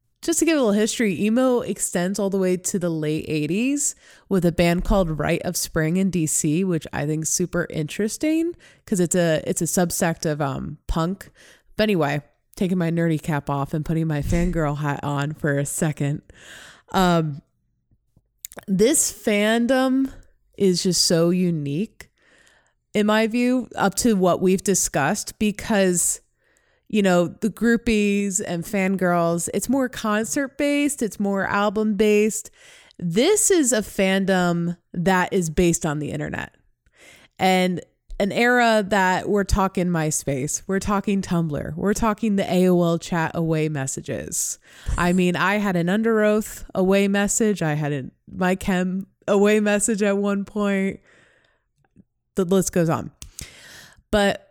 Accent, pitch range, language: American, 170-210 Hz, English